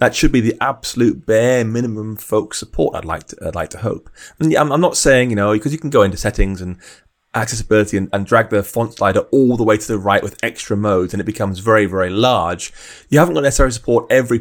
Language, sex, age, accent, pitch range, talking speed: English, male, 30-49, British, 100-125 Hz, 240 wpm